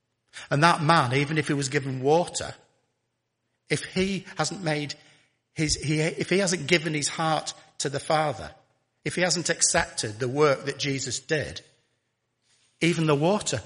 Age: 50-69